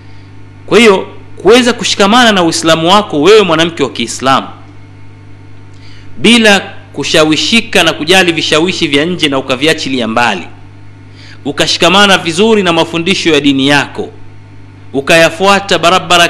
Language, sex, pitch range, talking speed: Swahili, male, 105-170 Hz, 115 wpm